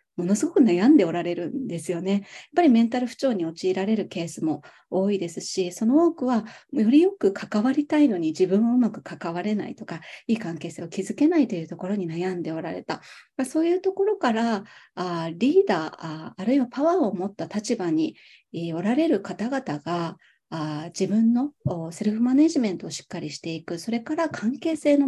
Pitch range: 175-255 Hz